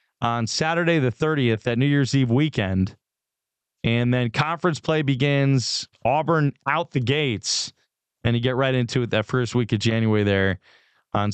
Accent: American